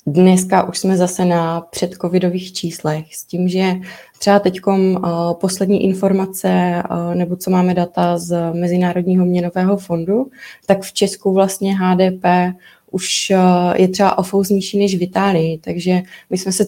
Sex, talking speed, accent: female, 135 wpm, native